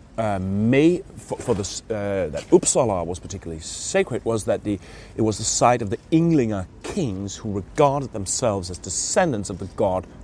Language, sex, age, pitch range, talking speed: English, male, 30-49, 100-130 Hz, 175 wpm